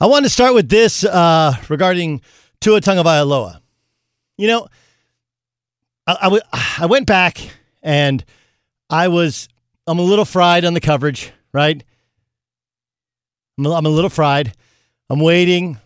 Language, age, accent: English, 50-69, American